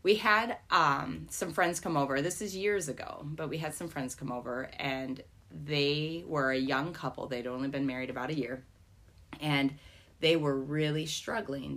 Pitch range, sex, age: 120-145 Hz, female, 30-49